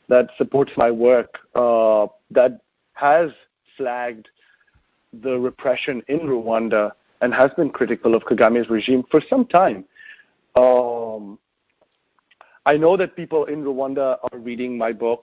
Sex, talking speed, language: male, 130 wpm, English